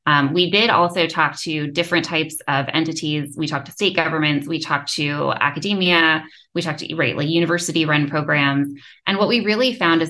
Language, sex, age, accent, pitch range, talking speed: English, female, 20-39, American, 145-175 Hz, 190 wpm